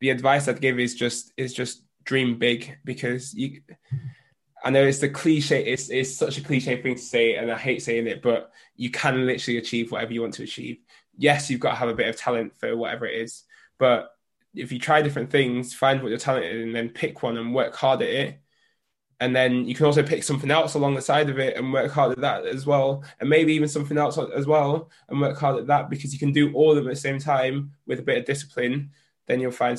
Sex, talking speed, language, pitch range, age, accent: male, 250 wpm, English, 120-140 Hz, 10-29, British